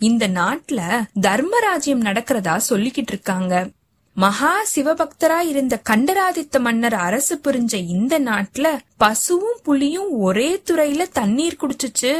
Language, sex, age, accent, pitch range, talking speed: Tamil, female, 20-39, native, 215-320 Hz, 110 wpm